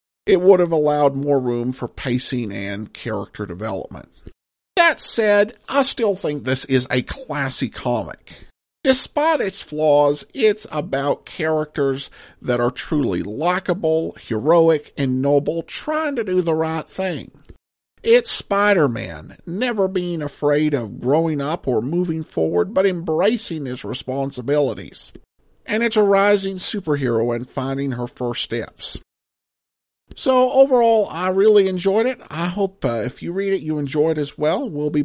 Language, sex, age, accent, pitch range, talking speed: English, male, 50-69, American, 135-195 Hz, 145 wpm